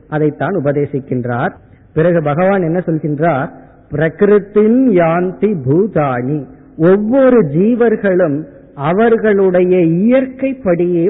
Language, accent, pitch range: Tamil, native, 150-205 Hz